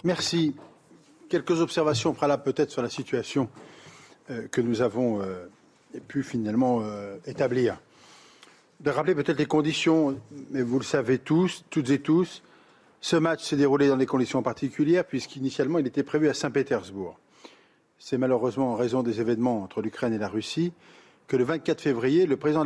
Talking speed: 155 wpm